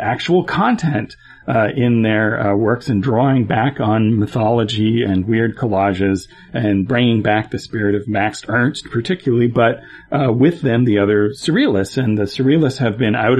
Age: 40-59